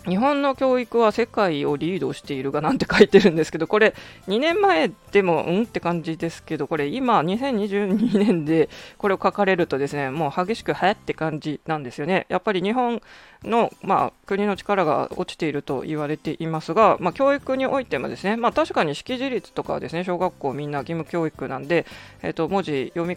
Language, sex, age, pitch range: Japanese, female, 20-39, 155-210 Hz